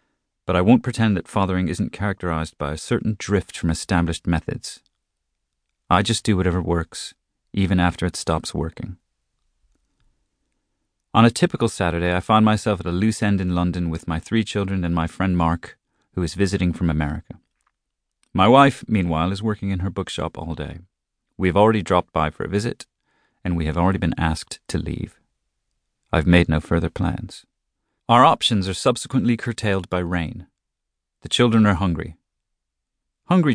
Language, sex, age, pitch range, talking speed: English, male, 30-49, 85-110 Hz, 170 wpm